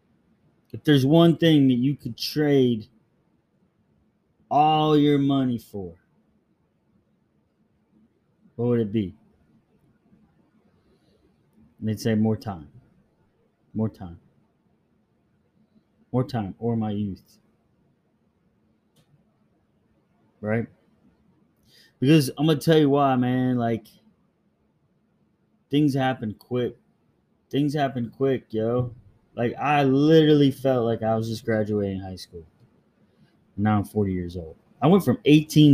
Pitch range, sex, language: 110-140 Hz, male, English